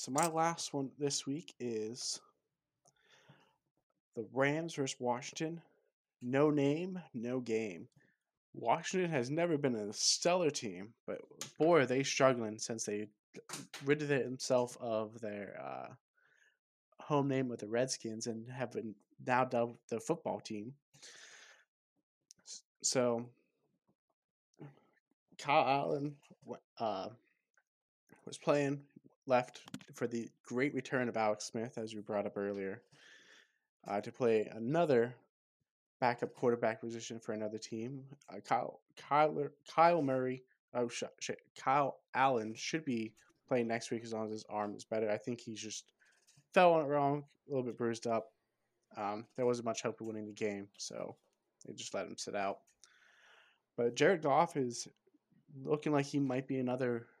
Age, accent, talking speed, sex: 20-39, American, 140 wpm, male